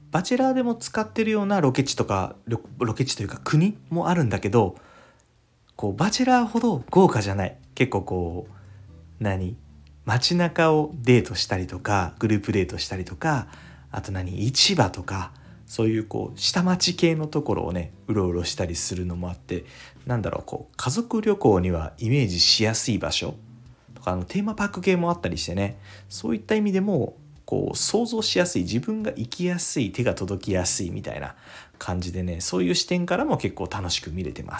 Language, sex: Japanese, male